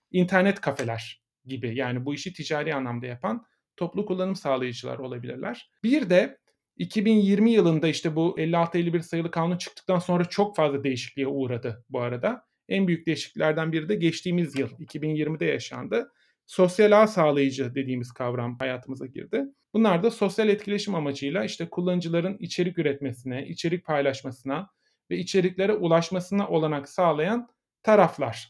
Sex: male